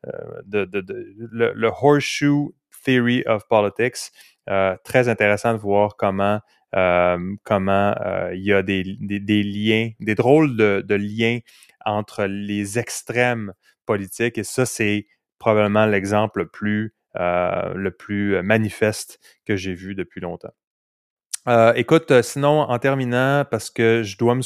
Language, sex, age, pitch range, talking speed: French, male, 30-49, 100-120 Hz, 130 wpm